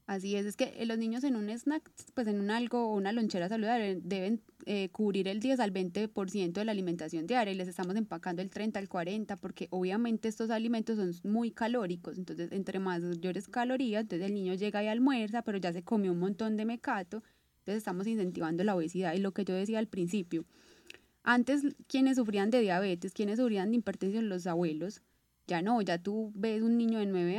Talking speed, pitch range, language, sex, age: 205 wpm, 185-235 Hz, Spanish, female, 20-39